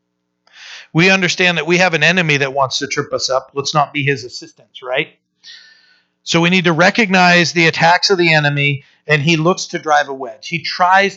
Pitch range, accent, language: 145-185 Hz, American, English